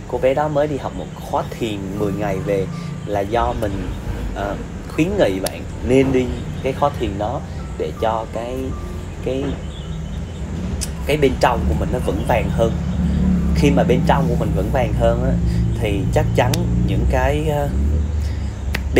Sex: male